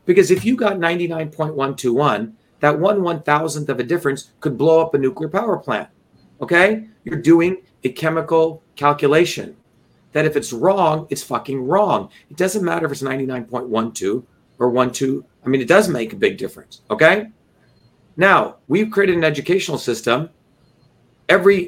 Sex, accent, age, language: male, American, 40-59, English